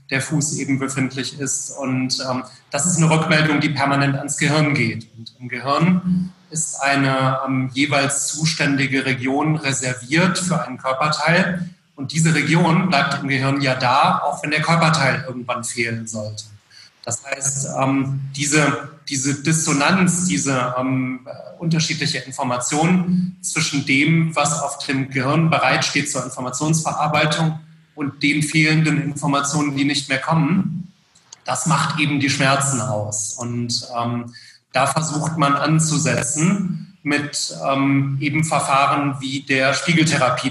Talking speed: 135 wpm